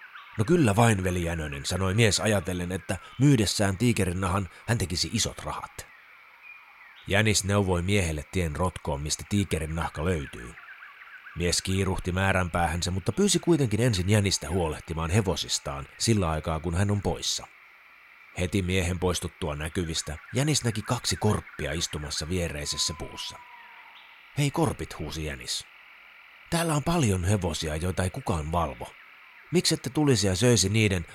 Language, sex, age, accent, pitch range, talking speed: Finnish, male, 30-49, native, 85-110 Hz, 135 wpm